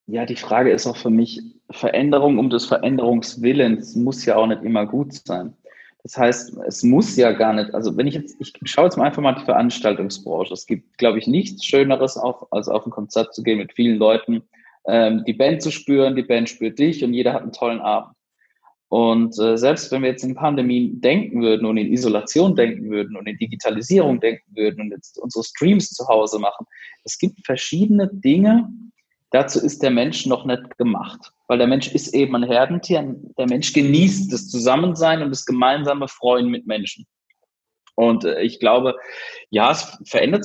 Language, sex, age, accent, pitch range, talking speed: German, male, 20-39, German, 115-170 Hz, 195 wpm